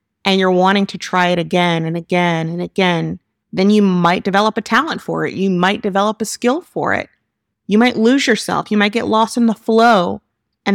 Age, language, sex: 30-49, English, female